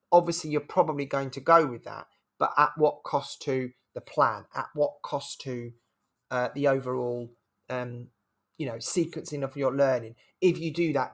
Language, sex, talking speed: English, male, 180 wpm